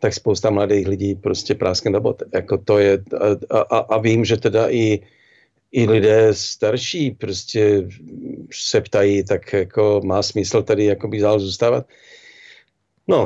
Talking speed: 130 wpm